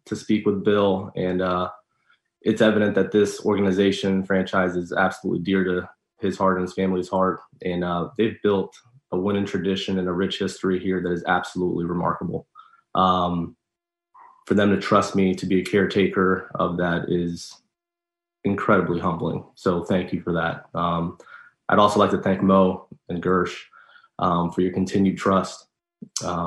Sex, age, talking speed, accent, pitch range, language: male, 20-39, 165 wpm, American, 90-95 Hz, English